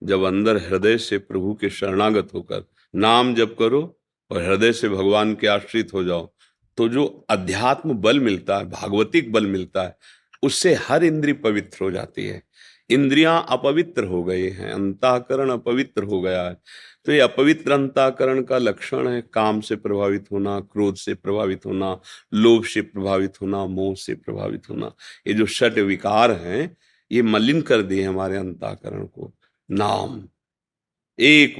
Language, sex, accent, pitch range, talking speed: Hindi, male, native, 100-115 Hz, 160 wpm